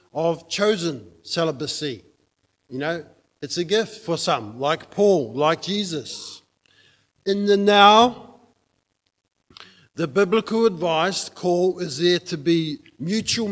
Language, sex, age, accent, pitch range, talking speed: English, male, 50-69, Australian, 150-185 Hz, 115 wpm